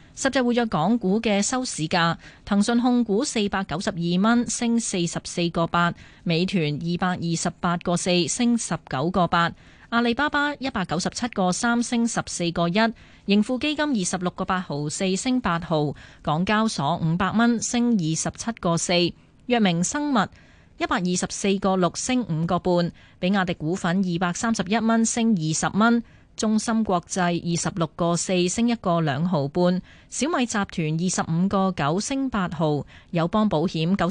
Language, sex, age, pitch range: Chinese, female, 20-39, 170-225 Hz